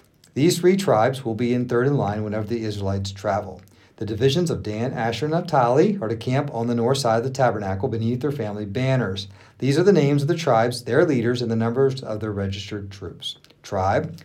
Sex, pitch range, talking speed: male, 110-170 Hz, 215 wpm